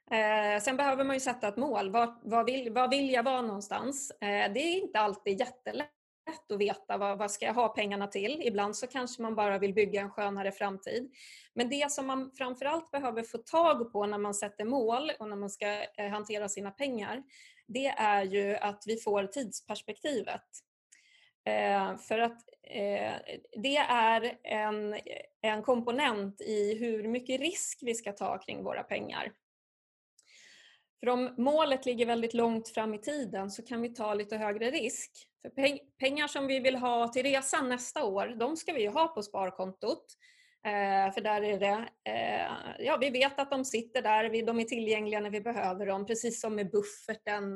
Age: 20-39